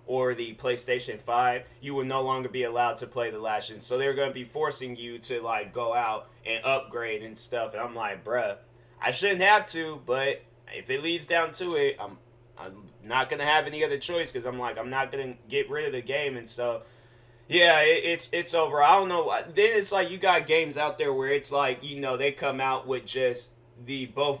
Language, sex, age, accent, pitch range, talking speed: English, male, 20-39, American, 120-145 Hz, 230 wpm